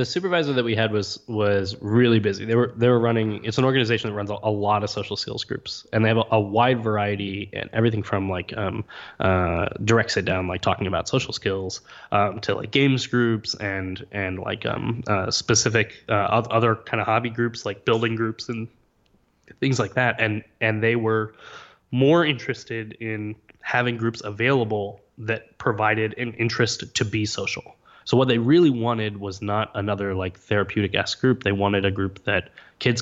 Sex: male